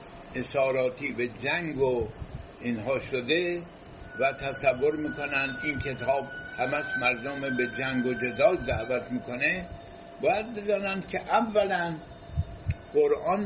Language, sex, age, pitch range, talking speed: English, male, 60-79, 130-205 Hz, 105 wpm